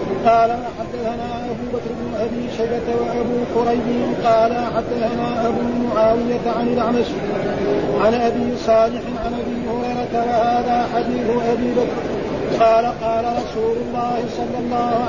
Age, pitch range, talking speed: 50-69, 230-245 Hz, 130 wpm